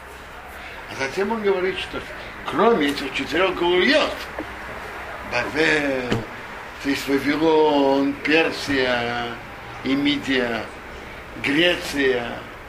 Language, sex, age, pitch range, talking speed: Russian, male, 60-79, 135-205 Hz, 70 wpm